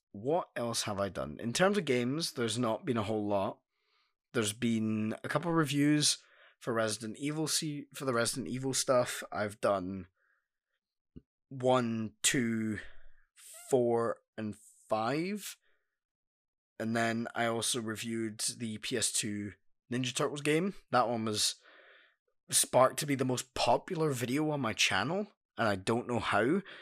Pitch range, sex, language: 115-140 Hz, male, English